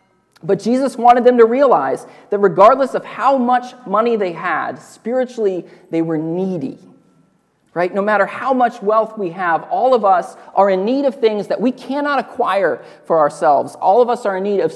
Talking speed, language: 190 wpm, English